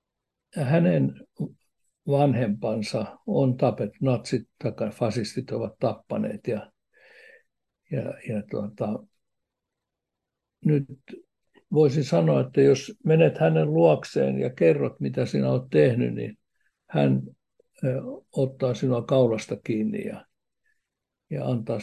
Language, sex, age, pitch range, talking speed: Finnish, male, 60-79, 110-145 Hz, 100 wpm